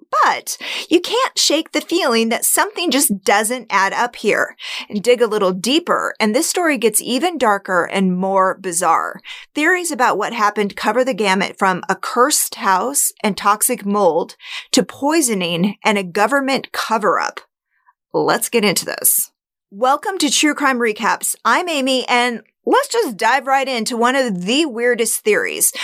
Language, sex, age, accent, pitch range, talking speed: English, female, 30-49, American, 200-295 Hz, 160 wpm